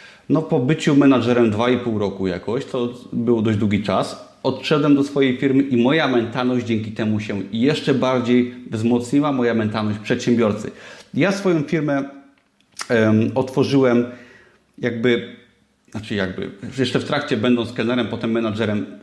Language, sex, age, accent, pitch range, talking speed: Polish, male, 30-49, native, 115-135 Hz, 135 wpm